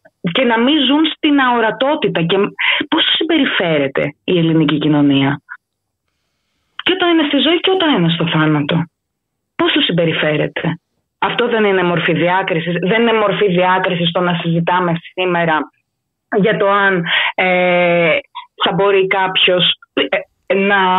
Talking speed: 130 wpm